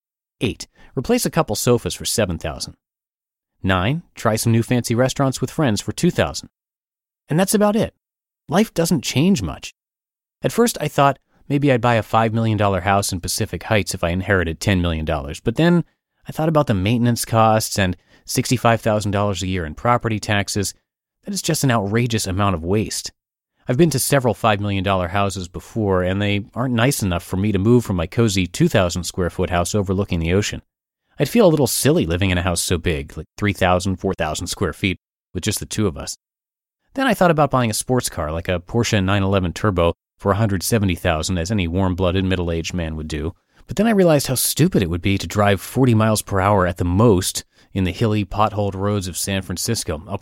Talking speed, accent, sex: 195 wpm, American, male